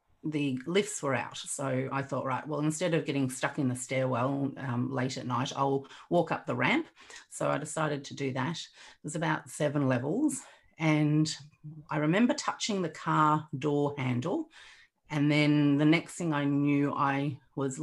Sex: female